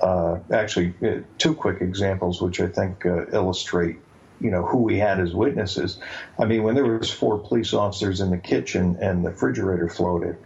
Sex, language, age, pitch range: male, English, 50-69, 90-105 Hz